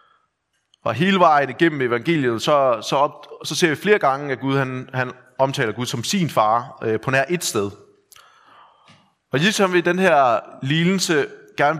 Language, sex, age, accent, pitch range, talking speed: Danish, male, 30-49, native, 120-175 Hz, 185 wpm